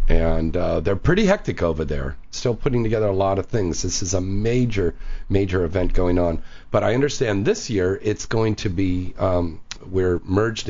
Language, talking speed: English, 190 wpm